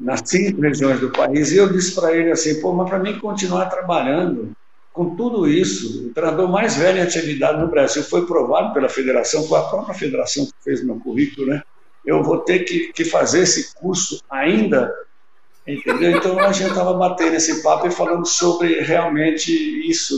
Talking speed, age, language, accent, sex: 185 wpm, 60-79, Portuguese, Brazilian, male